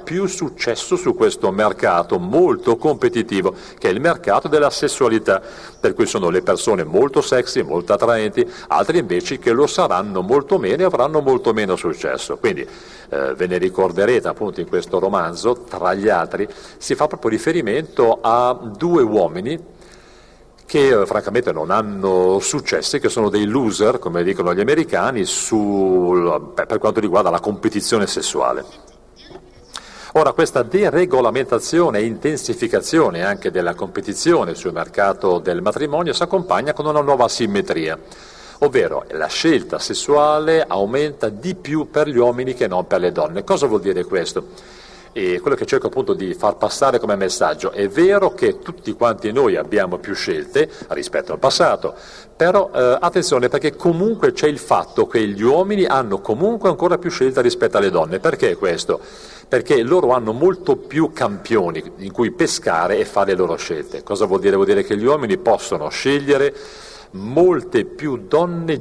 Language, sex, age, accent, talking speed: Italian, male, 50-69, native, 160 wpm